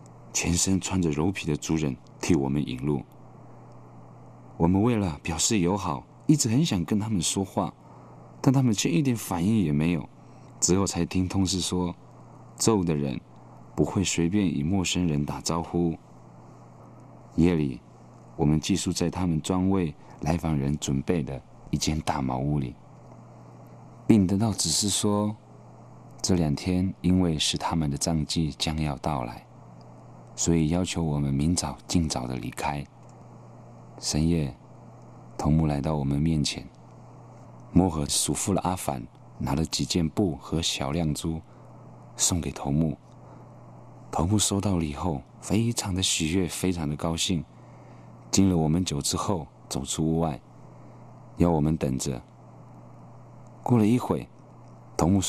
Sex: male